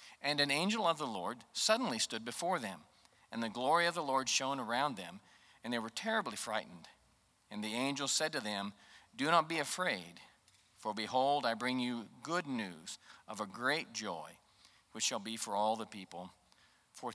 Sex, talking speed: male, 185 wpm